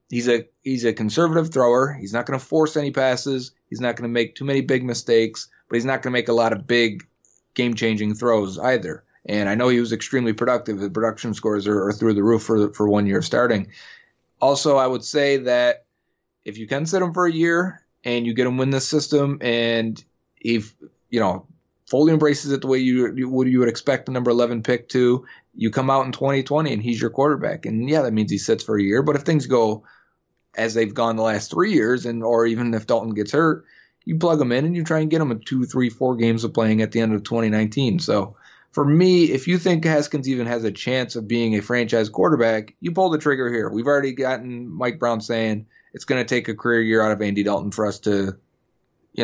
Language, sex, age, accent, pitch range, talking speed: English, male, 30-49, American, 110-135 Hz, 240 wpm